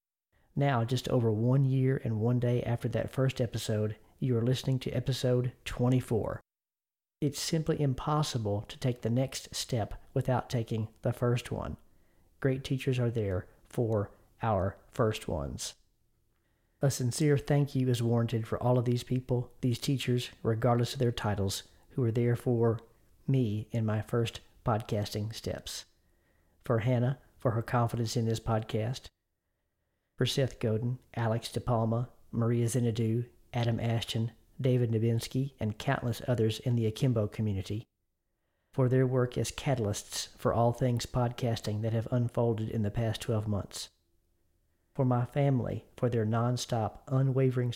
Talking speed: 150 wpm